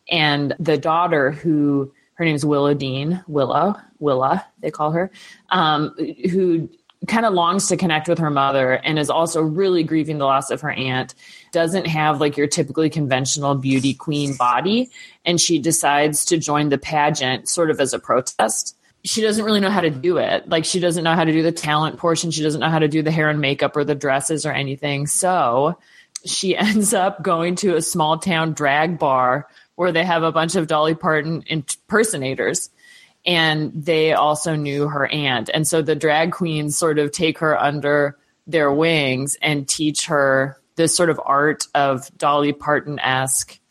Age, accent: 30-49, American